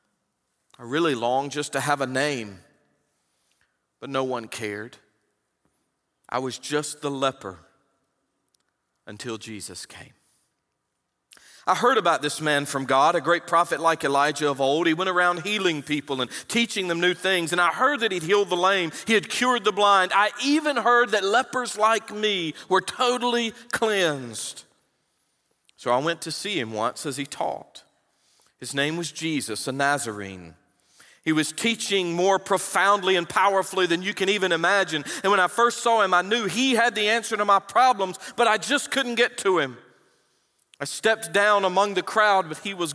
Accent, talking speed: American, 175 wpm